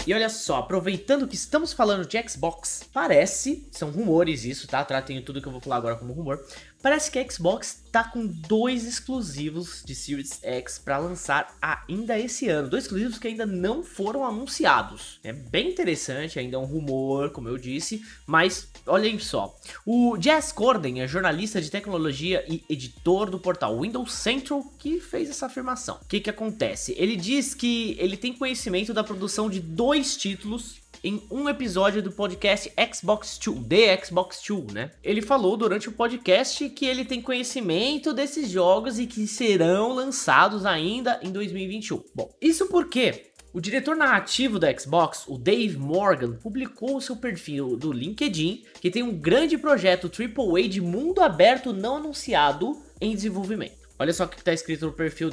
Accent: Brazilian